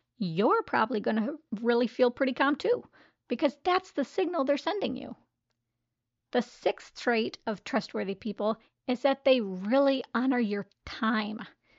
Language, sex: English, female